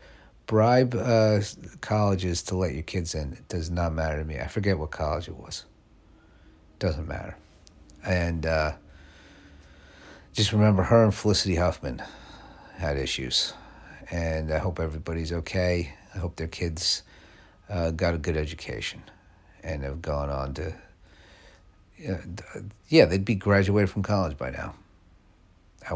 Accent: American